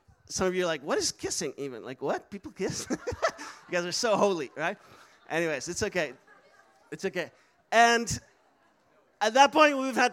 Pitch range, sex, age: 195-255 Hz, male, 30-49